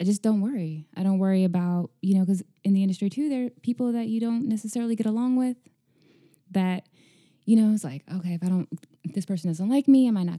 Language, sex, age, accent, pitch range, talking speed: English, female, 20-39, American, 160-200 Hz, 245 wpm